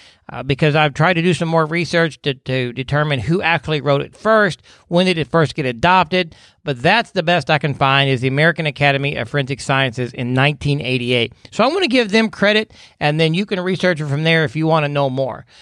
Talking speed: 230 wpm